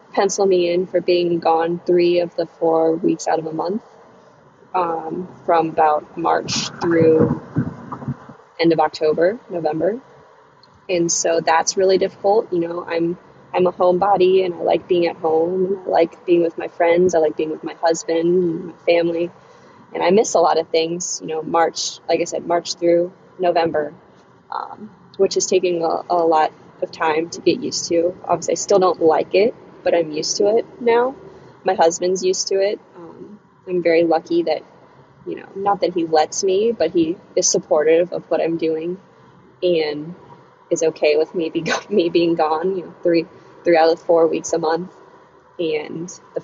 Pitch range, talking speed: 165-190 Hz, 180 wpm